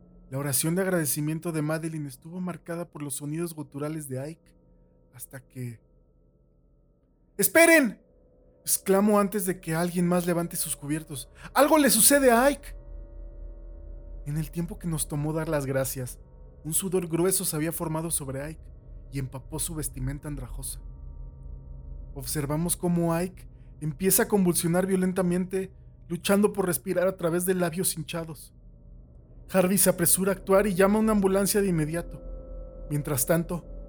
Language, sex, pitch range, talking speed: Spanish, male, 125-175 Hz, 145 wpm